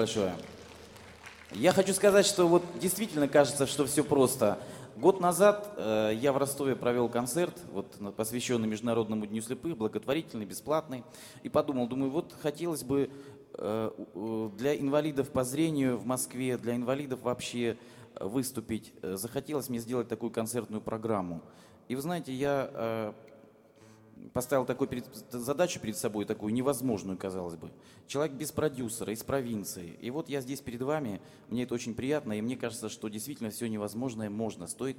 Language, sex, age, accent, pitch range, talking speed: Russian, male, 30-49, native, 110-135 Hz, 145 wpm